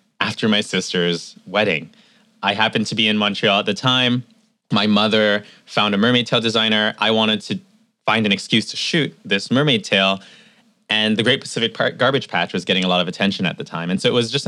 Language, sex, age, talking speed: English, male, 20-39, 215 wpm